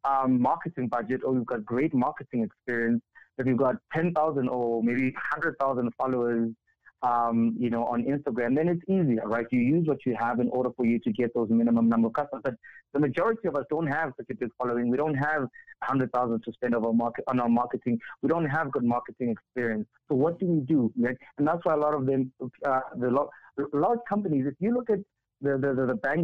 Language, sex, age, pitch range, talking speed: English, male, 30-49, 120-150 Hz, 220 wpm